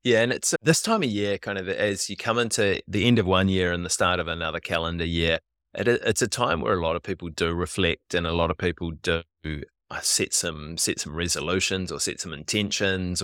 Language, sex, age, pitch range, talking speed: English, male, 20-39, 80-100 Hz, 230 wpm